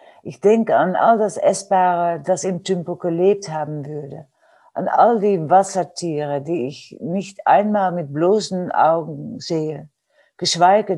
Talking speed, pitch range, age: 135 wpm, 150-185 Hz, 60-79